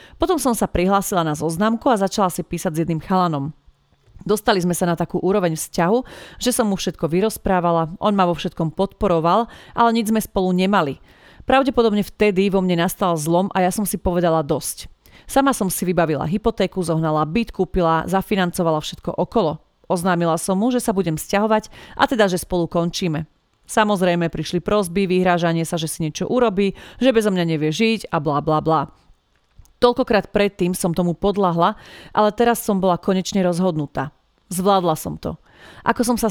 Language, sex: Slovak, female